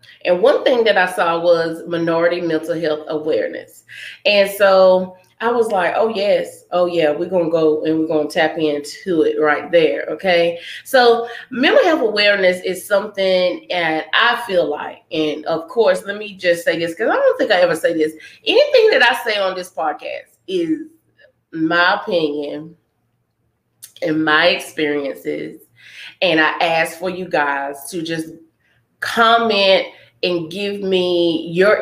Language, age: English, 20-39